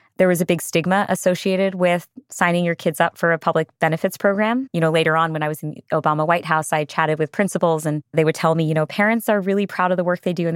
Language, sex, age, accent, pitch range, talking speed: English, female, 20-39, American, 155-185 Hz, 280 wpm